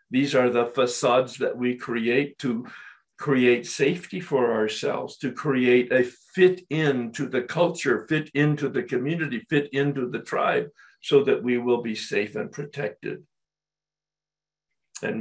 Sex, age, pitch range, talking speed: male, 50-69, 120-155 Hz, 140 wpm